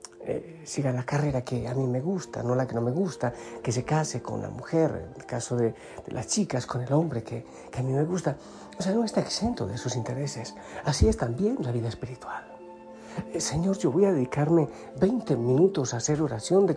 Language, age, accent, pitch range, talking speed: Spanish, 50-69, Spanish, 125-175 Hz, 225 wpm